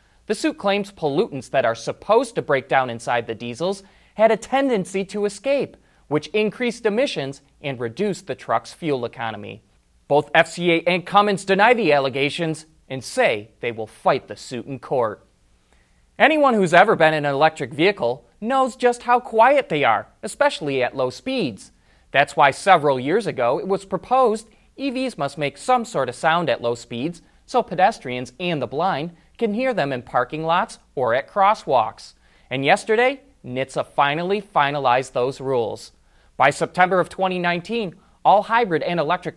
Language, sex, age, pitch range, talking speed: English, male, 30-49, 135-210 Hz, 165 wpm